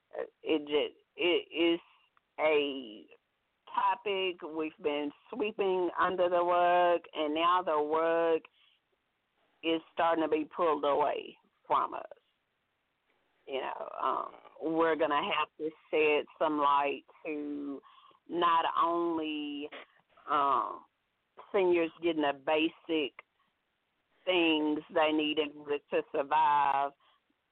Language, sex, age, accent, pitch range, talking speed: English, female, 40-59, American, 150-170 Hz, 105 wpm